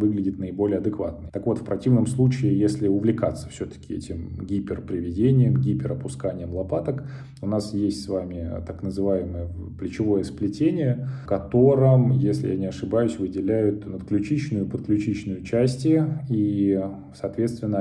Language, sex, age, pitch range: Russian, male, 20-39, 95-115 Hz